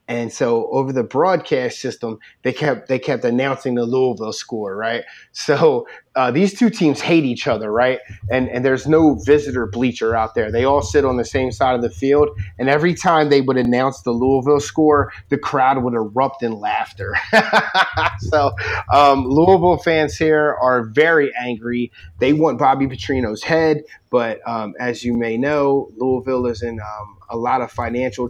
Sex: male